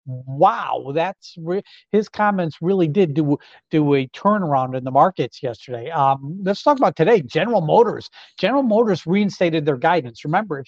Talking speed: 155 wpm